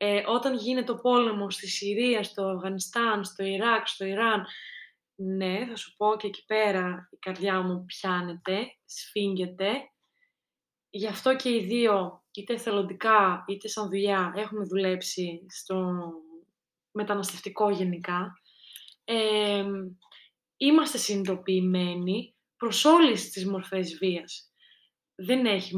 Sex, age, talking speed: female, 20-39, 115 wpm